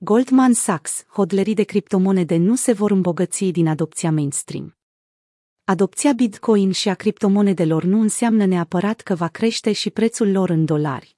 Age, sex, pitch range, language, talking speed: 30-49, female, 180-220 Hz, Romanian, 150 wpm